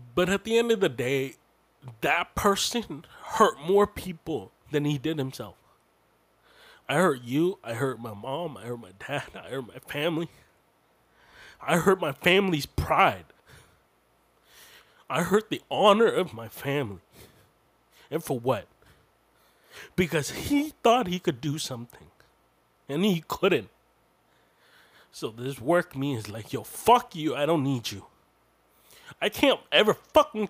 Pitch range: 125-180 Hz